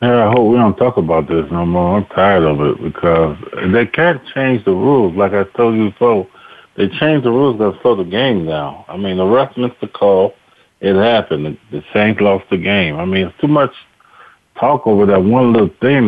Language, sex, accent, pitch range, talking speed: English, male, American, 95-120 Hz, 225 wpm